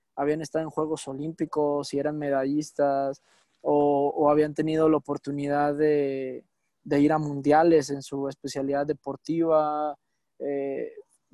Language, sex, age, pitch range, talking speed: Spanish, male, 20-39, 145-160 Hz, 125 wpm